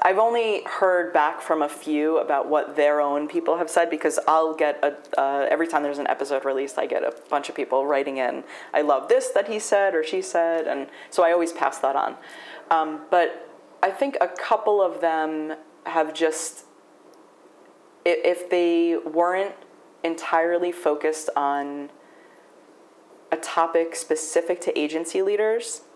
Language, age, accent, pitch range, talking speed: English, 30-49, American, 145-175 Hz, 165 wpm